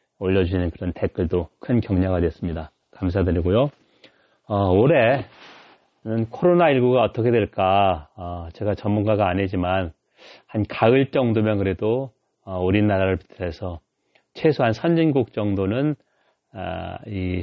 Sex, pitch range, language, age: male, 95-125 Hz, Korean, 30-49